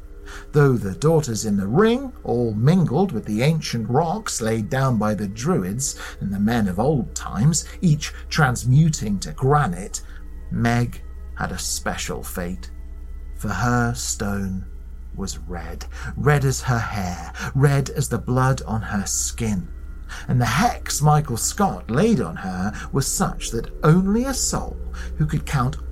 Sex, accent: male, British